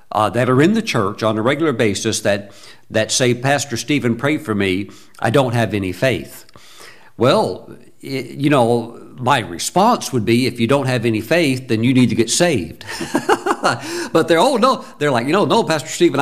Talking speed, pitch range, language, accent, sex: 200 wpm, 110-145 Hz, English, American, male